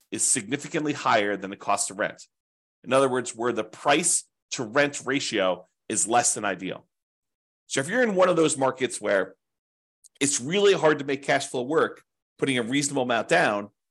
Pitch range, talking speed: 115-155 Hz, 185 wpm